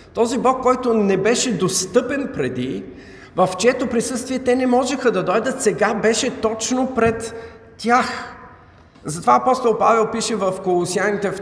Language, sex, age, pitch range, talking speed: Bulgarian, male, 50-69, 170-235 Hz, 135 wpm